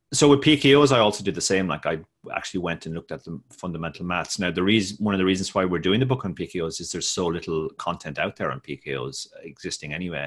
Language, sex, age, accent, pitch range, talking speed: English, male, 30-49, Irish, 80-95 Hz, 250 wpm